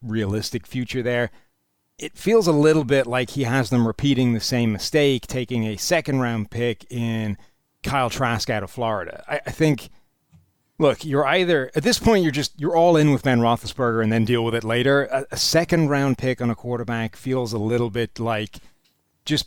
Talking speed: 195 wpm